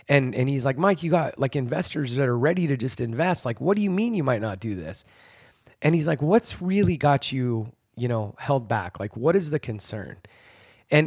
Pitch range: 105-140 Hz